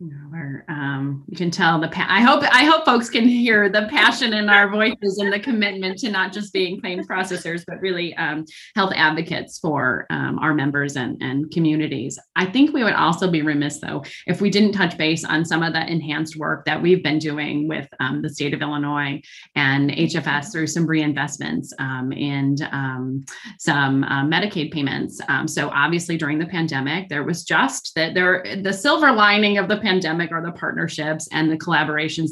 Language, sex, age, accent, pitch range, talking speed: English, female, 30-49, American, 155-195 Hz, 190 wpm